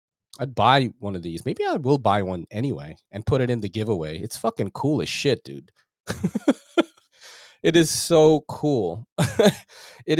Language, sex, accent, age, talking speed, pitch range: English, male, American, 30-49, 165 wpm, 110-160 Hz